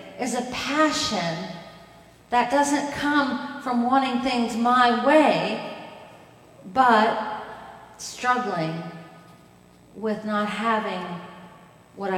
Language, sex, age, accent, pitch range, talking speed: English, female, 40-59, American, 170-240 Hz, 85 wpm